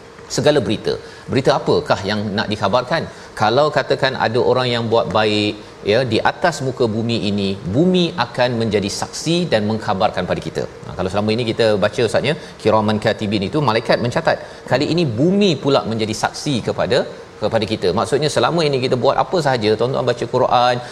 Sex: male